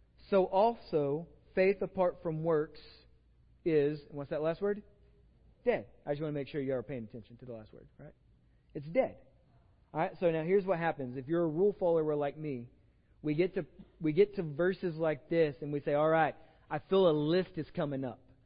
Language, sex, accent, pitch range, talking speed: English, male, American, 145-185 Hz, 200 wpm